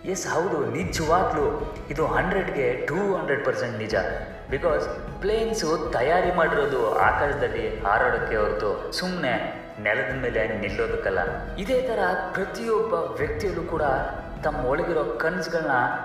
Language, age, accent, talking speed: Kannada, 30-49, native, 105 wpm